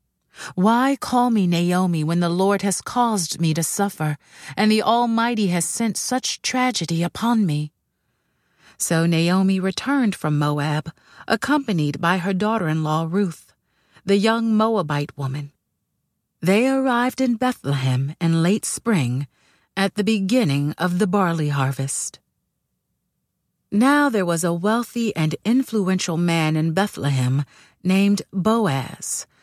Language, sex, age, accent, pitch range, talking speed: English, female, 40-59, American, 155-215 Hz, 125 wpm